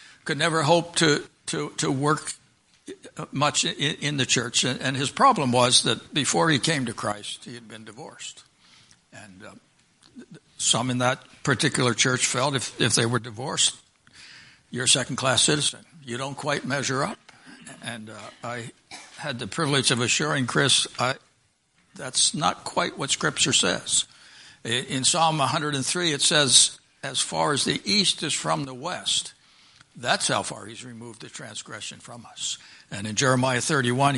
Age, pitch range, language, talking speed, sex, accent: 60-79, 120-160 Hz, English, 160 wpm, male, American